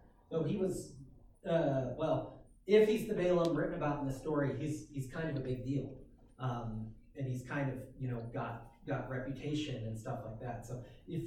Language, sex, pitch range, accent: English, male, 125-155 Hz, American